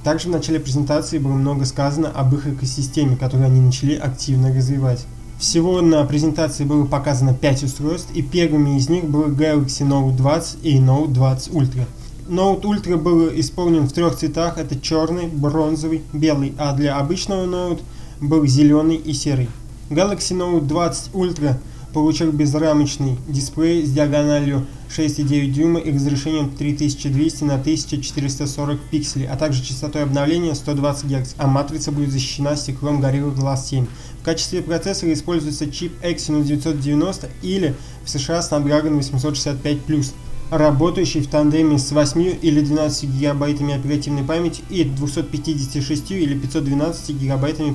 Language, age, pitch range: Russian, 20-39, 140-160 Hz